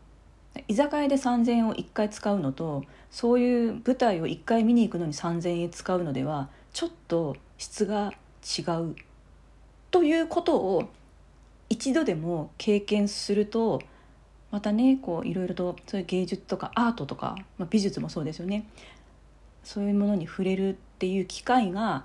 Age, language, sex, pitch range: 40-59, Japanese, female, 165-210 Hz